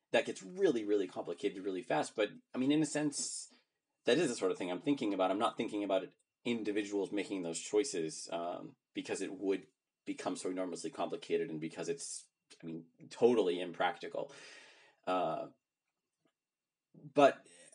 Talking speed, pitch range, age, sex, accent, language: 160 wpm, 85-110 Hz, 30-49, male, American, English